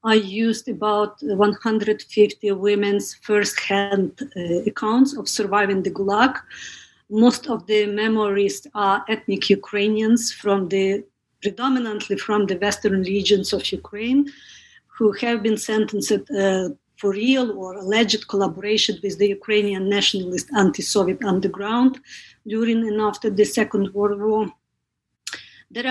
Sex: female